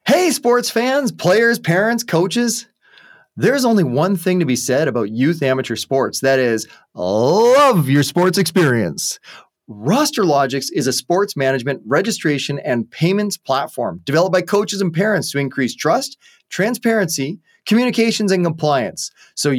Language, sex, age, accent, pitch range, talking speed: English, male, 30-49, American, 135-200 Hz, 140 wpm